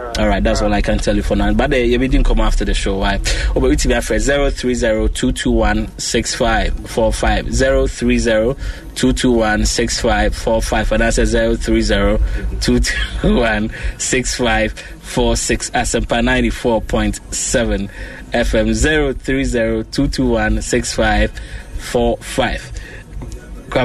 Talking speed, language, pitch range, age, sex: 140 wpm, English, 110-135 Hz, 20-39, male